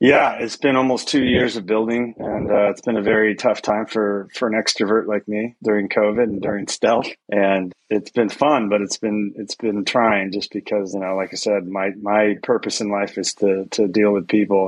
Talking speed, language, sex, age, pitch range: 225 wpm, English, male, 30-49, 100-115 Hz